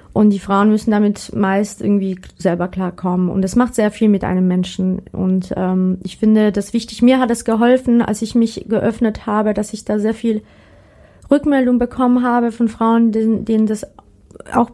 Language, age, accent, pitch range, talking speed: German, 30-49, German, 205-235 Hz, 185 wpm